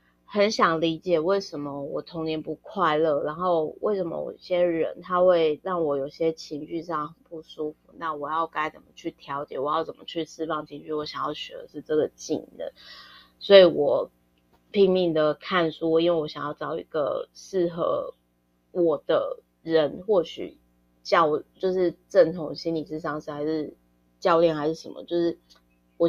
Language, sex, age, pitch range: Chinese, female, 20-39, 150-185 Hz